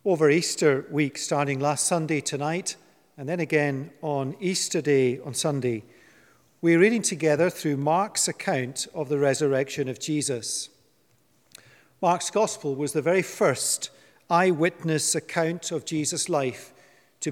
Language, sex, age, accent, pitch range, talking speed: English, male, 40-59, British, 145-180 Hz, 130 wpm